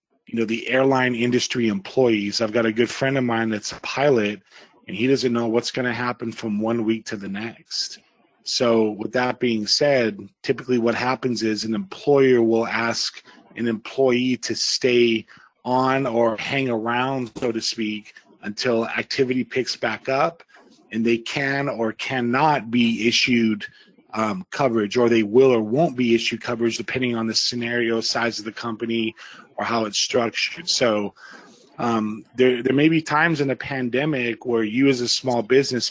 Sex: male